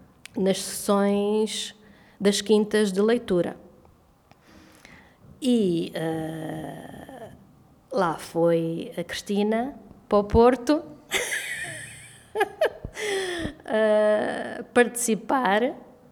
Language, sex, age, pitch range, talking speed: Portuguese, female, 20-39, 170-230 Hz, 55 wpm